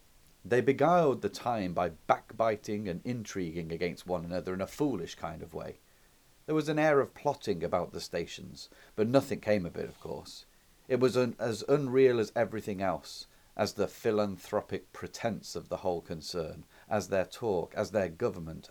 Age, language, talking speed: 40-59, English, 175 wpm